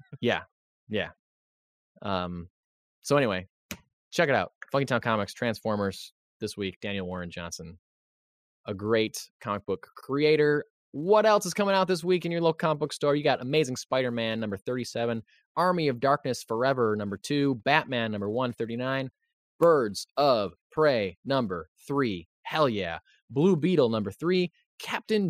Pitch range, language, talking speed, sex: 110-160 Hz, English, 145 wpm, male